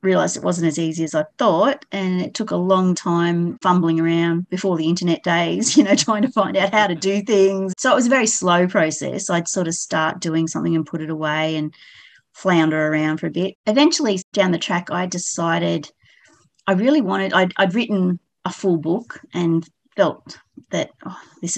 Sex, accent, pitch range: female, Australian, 165-200 Hz